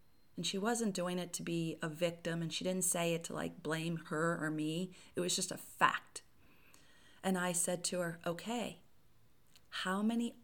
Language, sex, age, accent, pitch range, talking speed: English, female, 40-59, American, 155-185 Hz, 190 wpm